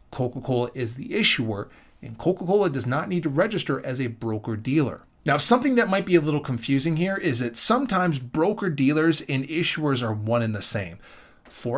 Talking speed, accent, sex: 180 wpm, American, male